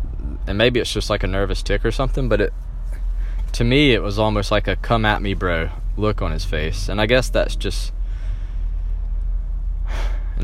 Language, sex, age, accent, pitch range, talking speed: English, male, 20-39, American, 80-105 Hz, 170 wpm